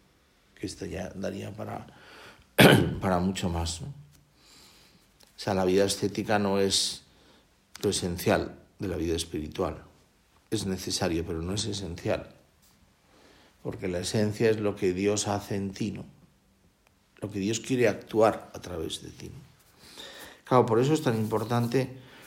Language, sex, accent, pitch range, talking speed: Spanish, male, Spanish, 95-110 Hz, 150 wpm